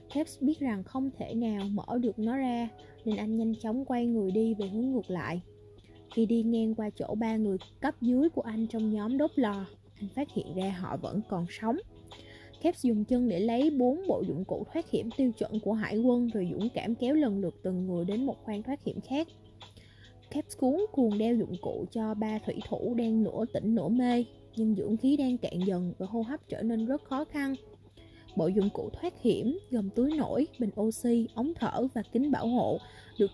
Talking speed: 215 wpm